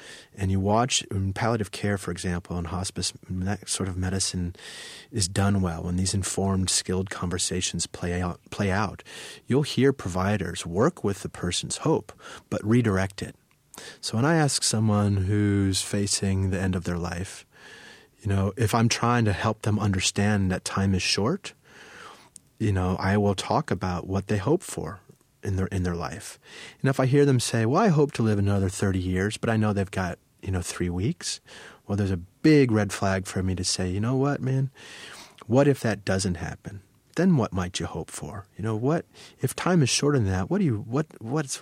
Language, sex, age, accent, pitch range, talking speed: English, male, 30-49, American, 95-125 Hz, 200 wpm